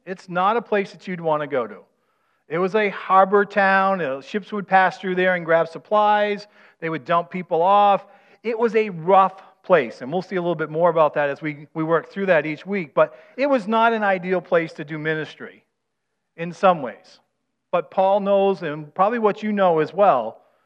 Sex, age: male, 40-59